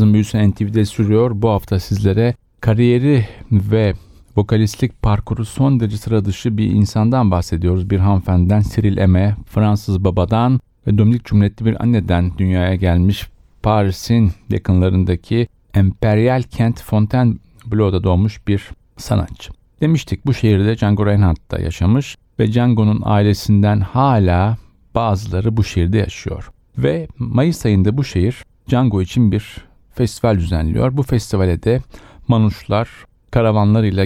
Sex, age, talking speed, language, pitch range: male, 40-59, 115 wpm, Turkish, 95-115 Hz